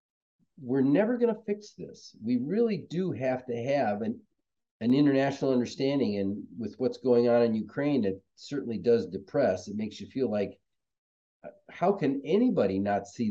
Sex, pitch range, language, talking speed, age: male, 105-145 Hz, English, 165 wpm, 50-69